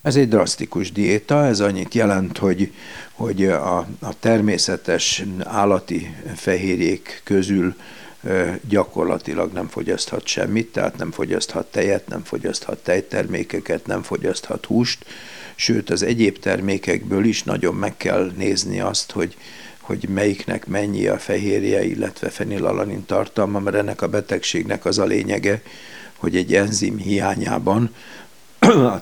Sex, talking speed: male, 125 wpm